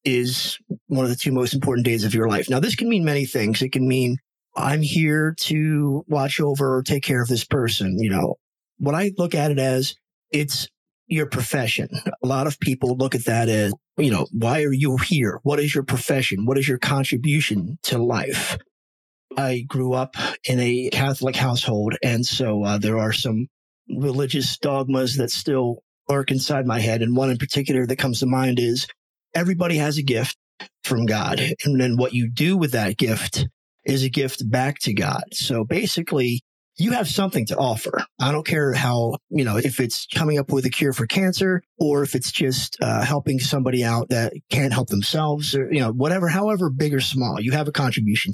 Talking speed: 200 wpm